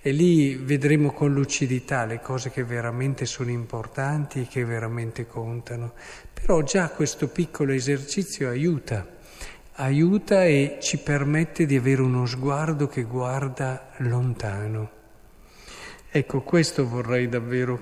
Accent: native